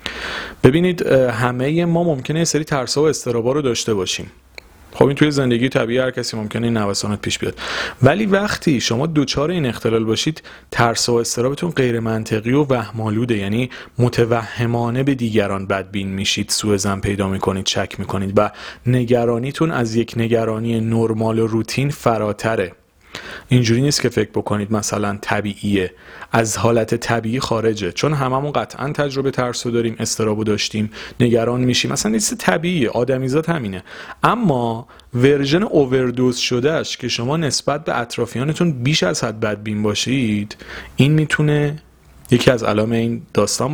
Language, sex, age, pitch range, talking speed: Persian, male, 30-49, 105-135 Hz, 140 wpm